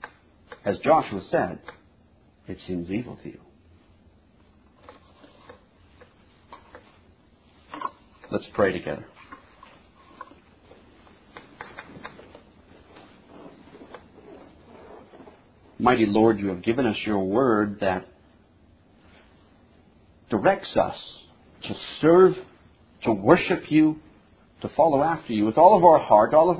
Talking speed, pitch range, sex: 85 wpm, 95-140 Hz, male